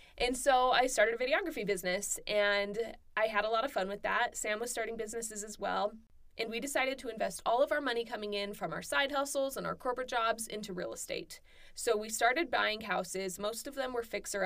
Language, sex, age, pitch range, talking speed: English, female, 20-39, 190-235 Hz, 225 wpm